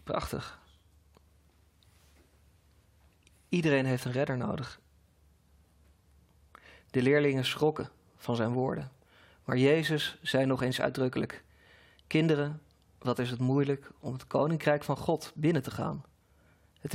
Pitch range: 125-155 Hz